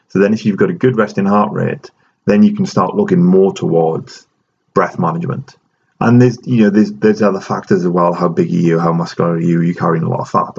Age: 30-49